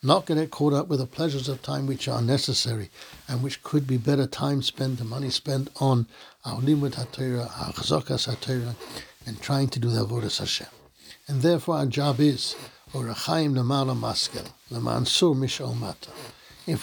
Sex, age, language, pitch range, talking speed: male, 60-79, English, 120-145 Hz, 150 wpm